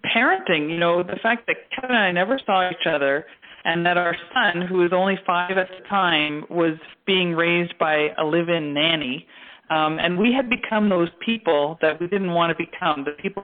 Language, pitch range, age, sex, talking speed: English, 160-190 Hz, 40-59, female, 205 wpm